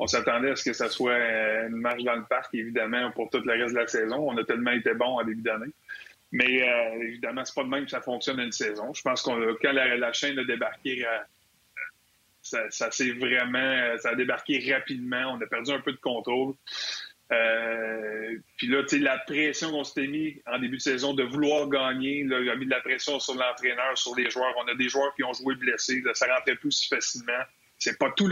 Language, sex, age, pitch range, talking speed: French, male, 30-49, 125-150 Hz, 235 wpm